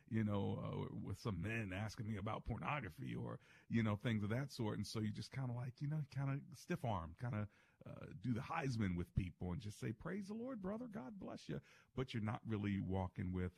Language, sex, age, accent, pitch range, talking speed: English, male, 50-69, American, 95-130 Hz, 240 wpm